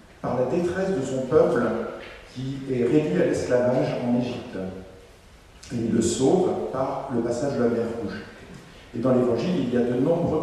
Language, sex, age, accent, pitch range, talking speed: French, male, 50-69, French, 115-140 Hz, 185 wpm